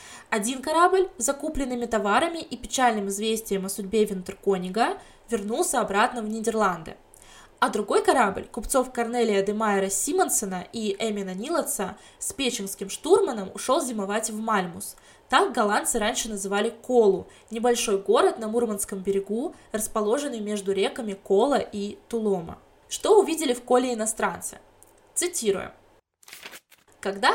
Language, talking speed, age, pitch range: Russian, 120 wpm, 20-39, 200-250 Hz